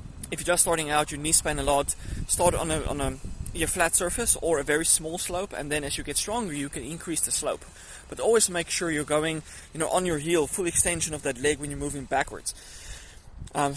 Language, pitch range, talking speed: English, 145-175 Hz, 240 wpm